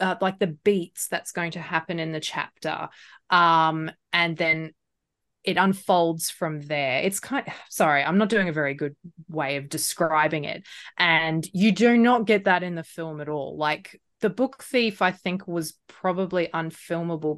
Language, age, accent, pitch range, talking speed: English, 20-39, Australian, 155-200 Hz, 180 wpm